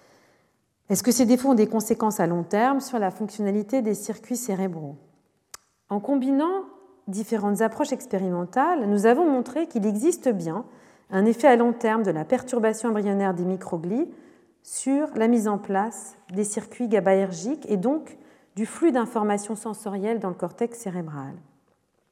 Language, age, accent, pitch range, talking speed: French, 40-59, French, 200-255 Hz, 150 wpm